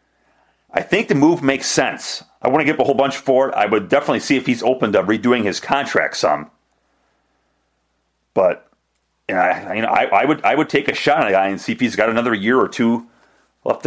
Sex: male